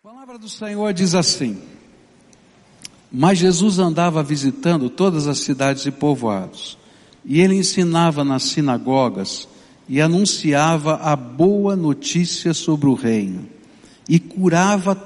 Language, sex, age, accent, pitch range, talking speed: English, male, 60-79, Brazilian, 130-175 Hz, 120 wpm